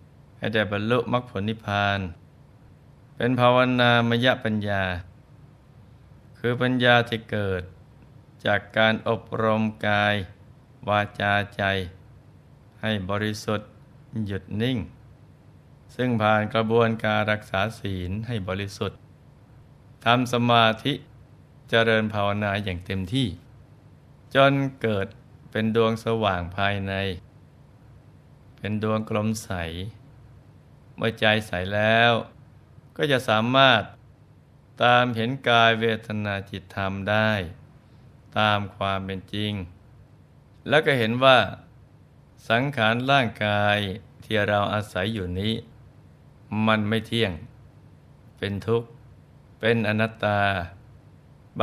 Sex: male